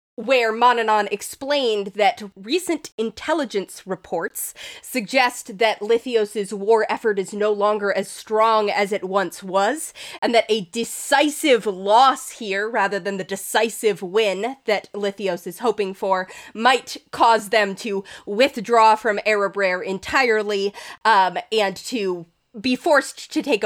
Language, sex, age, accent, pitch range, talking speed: English, female, 20-39, American, 195-235 Hz, 130 wpm